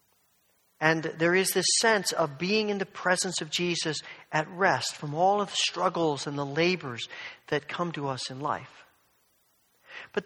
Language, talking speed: English, 170 wpm